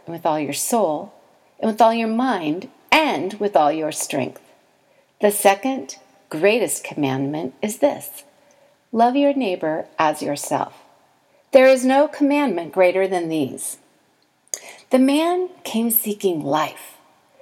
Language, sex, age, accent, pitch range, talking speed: English, female, 50-69, American, 180-270 Hz, 125 wpm